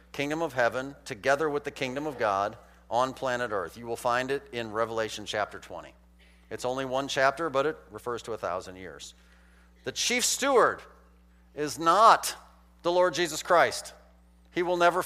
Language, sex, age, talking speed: English, male, 40-59, 170 wpm